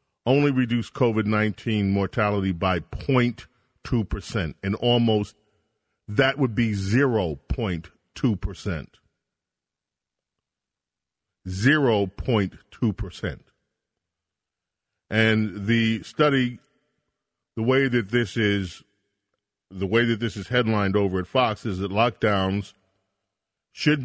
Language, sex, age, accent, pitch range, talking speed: English, male, 40-59, American, 100-125 Hz, 85 wpm